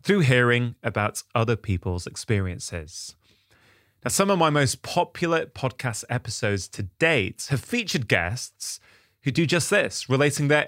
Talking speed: 140 wpm